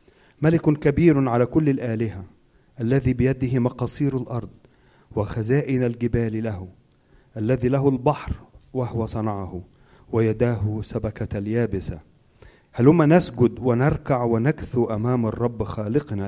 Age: 40-59